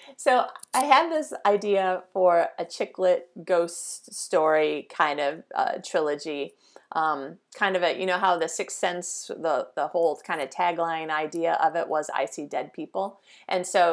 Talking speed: 170 wpm